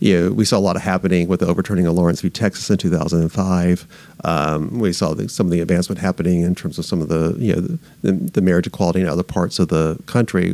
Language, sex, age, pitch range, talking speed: English, male, 40-59, 90-105 Hz, 250 wpm